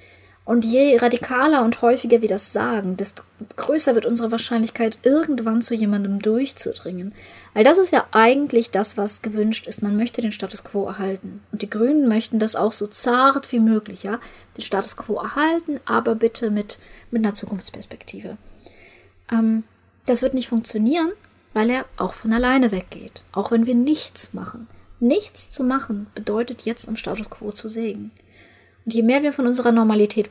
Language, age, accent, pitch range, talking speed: German, 30-49, German, 200-240 Hz, 170 wpm